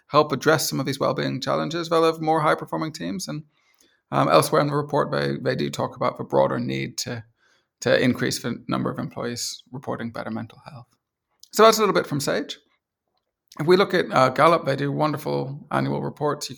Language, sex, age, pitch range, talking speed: English, male, 30-49, 120-160 Hz, 205 wpm